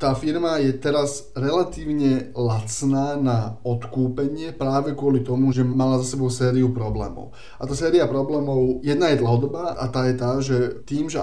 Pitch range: 125-140 Hz